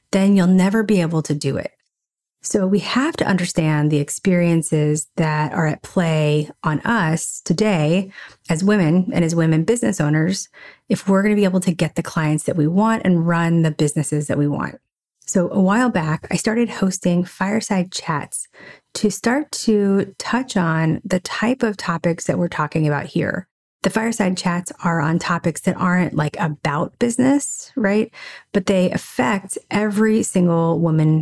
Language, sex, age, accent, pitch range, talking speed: English, female, 30-49, American, 155-200 Hz, 175 wpm